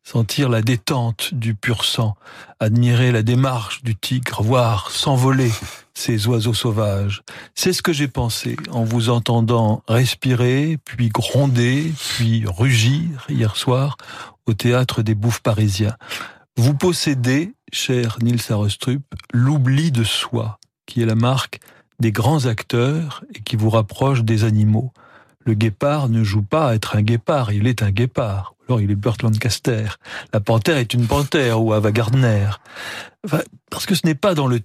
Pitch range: 110-130 Hz